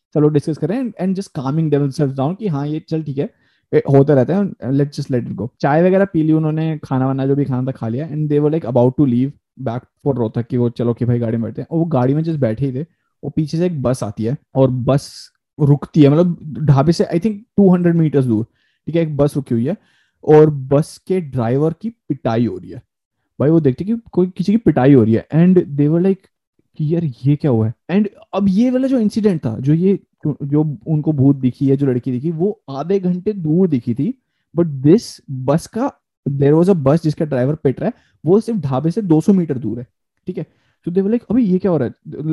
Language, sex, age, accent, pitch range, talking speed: Hindi, male, 20-39, native, 135-170 Hz, 170 wpm